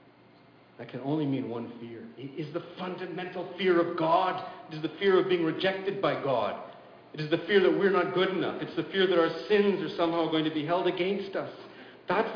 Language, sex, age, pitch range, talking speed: English, male, 50-69, 125-180 Hz, 225 wpm